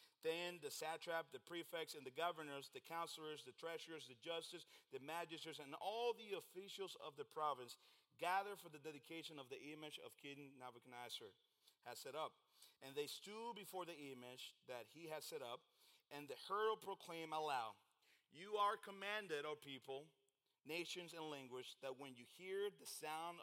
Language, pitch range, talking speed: English, 145-185 Hz, 170 wpm